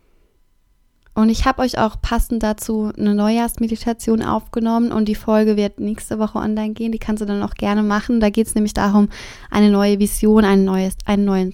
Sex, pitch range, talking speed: female, 205-230 Hz, 180 wpm